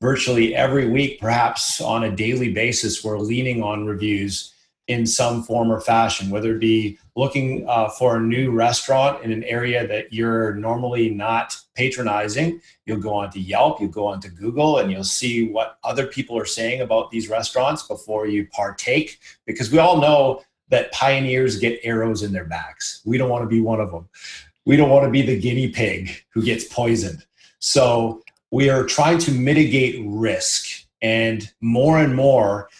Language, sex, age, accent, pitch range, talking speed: English, male, 30-49, American, 110-125 Hz, 175 wpm